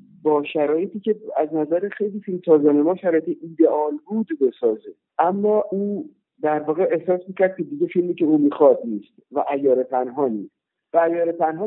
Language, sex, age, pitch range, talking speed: Persian, male, 50-69, 130-195 Hz, 155 wpm